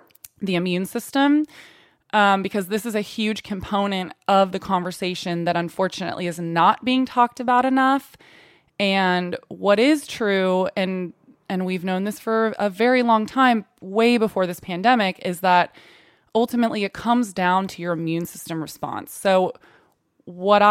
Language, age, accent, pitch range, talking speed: English, 20-39, American, 180-210 Hz, 150 wpm